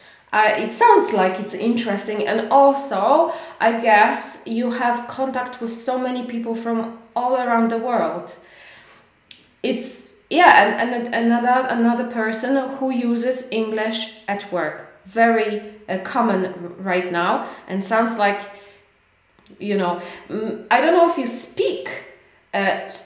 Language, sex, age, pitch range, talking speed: Polish, female, 20-39, 205-250 Hz, 135 wpm